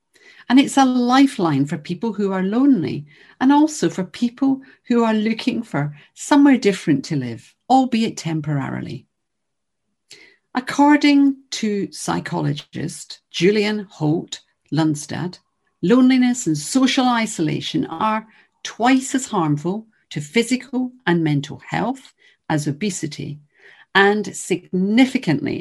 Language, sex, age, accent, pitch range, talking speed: English, female, 50-69, British, 150-235 Hz, 110 wpm